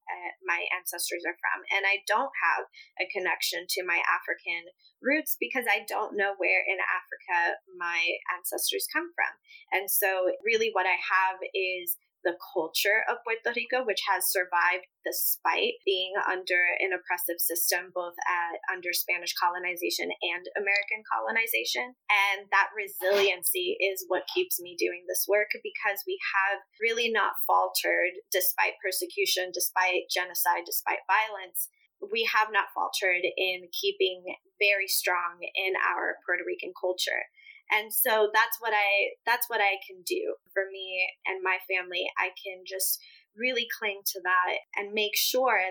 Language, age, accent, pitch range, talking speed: English, 20-39, American, 185-310 Hz, 150 wpm